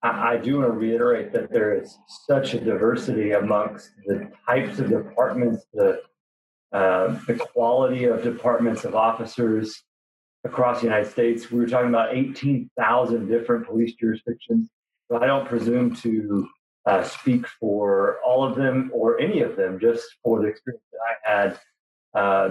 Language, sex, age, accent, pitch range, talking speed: English, male, 40-59, American, 110-140 Hz, 155 wpm